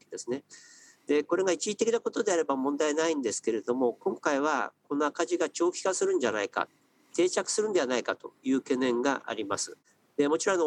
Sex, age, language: male, 50-69, Japanese